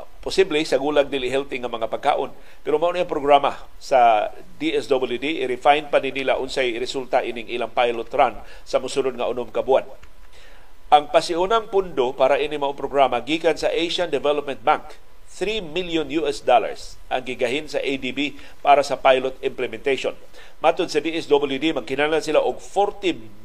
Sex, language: male, Filipino